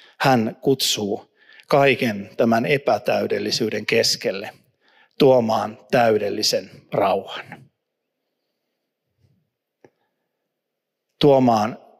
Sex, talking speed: male, 50 wpm